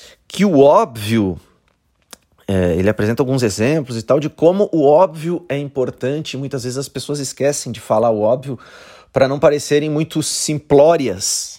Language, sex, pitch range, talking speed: Portuguese, male, 105-145 Hz, 155 wpm